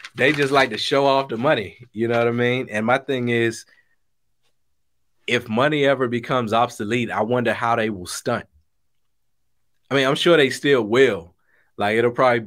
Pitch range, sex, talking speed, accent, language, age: 100-120 Hz, male, 185 wpm, American, English, 20-39